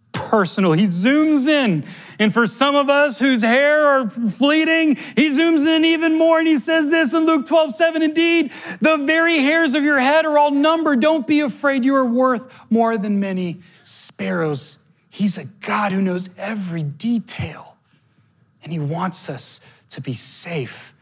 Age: 40-59